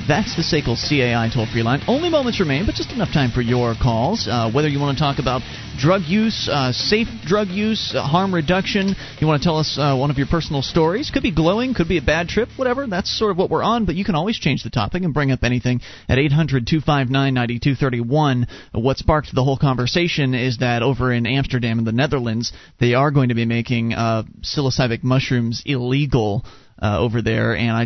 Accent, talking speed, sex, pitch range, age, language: American, 215 wpm, male, 120-155 Hz, 30-49, English